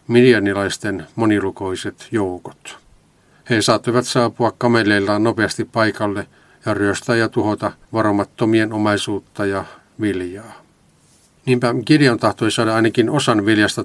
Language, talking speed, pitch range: Finnish, 105 wpm, 100-115 Hz